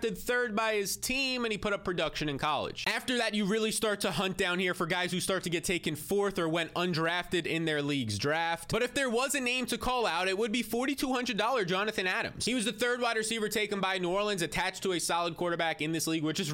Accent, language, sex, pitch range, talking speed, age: American, English, male, 175-230 Hz, 255 wpm, 20-39